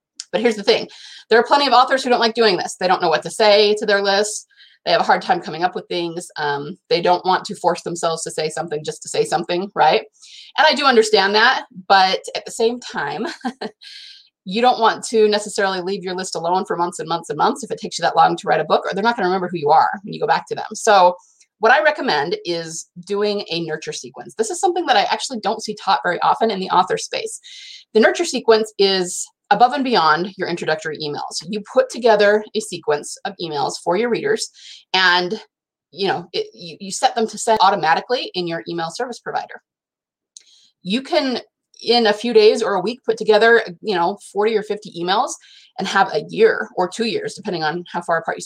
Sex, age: female, 30-49